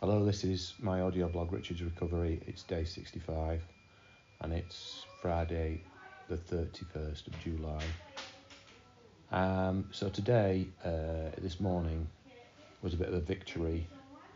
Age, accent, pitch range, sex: 40-59, British, 80-95 Hz, male